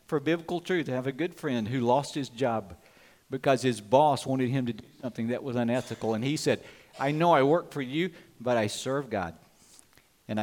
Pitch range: 115-160 Hz